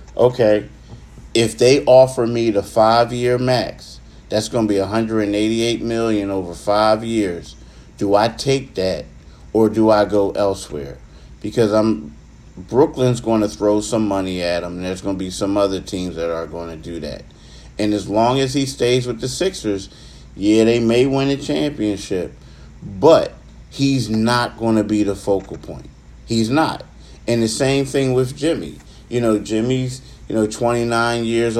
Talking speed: 165 wpm